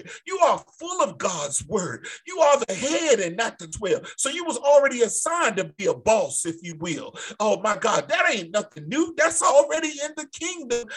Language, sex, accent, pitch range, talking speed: English, male, American, 220-305 Hz, 210 wpm